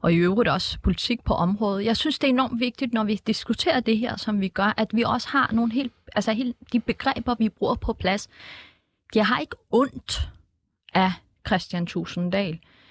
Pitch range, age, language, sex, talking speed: 195-255 Hz, 30-49, Danish, female, 195 wpm